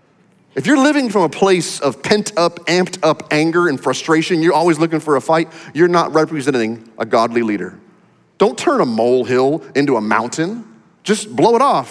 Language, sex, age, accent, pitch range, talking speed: English, male, 30-49, American, 125-175 Hz, 185 wpm